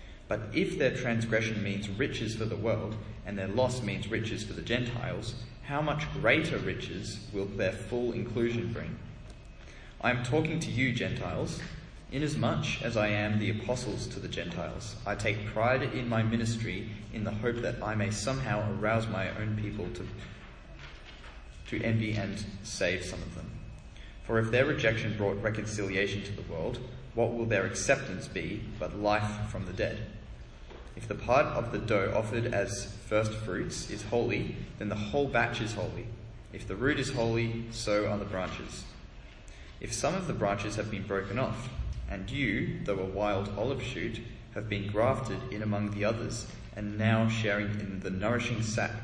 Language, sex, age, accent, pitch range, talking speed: English, male, 20-39, Australian, 100-115 Hz, 175 wpm